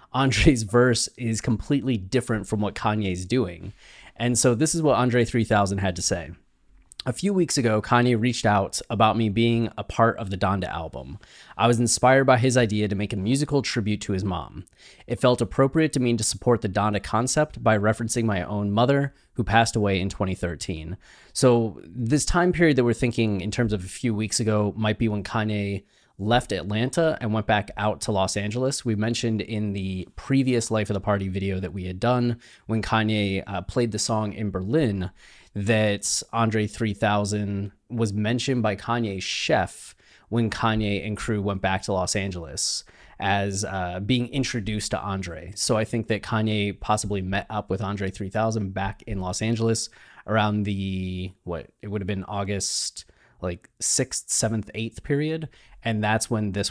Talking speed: 185 wpm